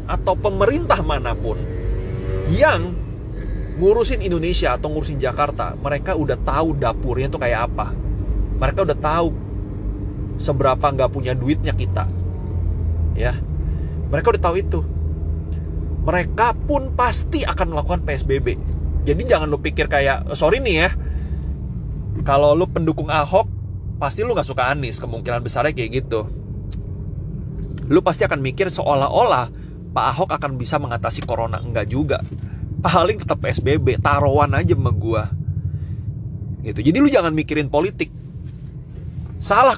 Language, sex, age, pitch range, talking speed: Indonesian, male, 30-49, 105-145 Hz, 125 wpm